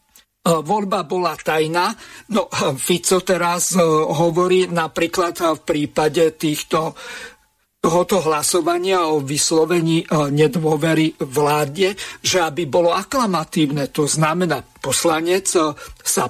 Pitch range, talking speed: 160-190 Hz, 90 wpm